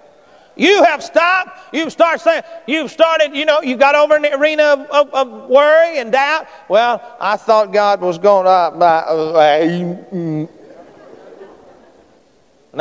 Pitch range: 210-345 Hz